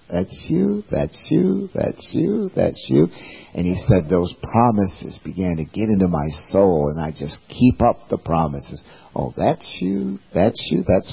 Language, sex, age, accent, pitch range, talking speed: English, male, 50-69, American, 85-115 Hz, 175 wpm